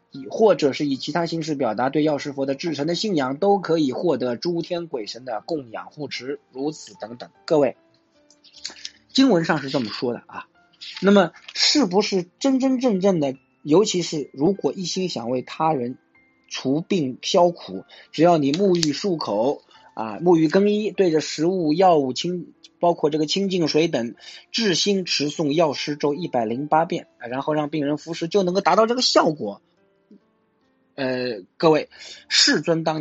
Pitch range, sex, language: 135-175 Hz, male, Chinese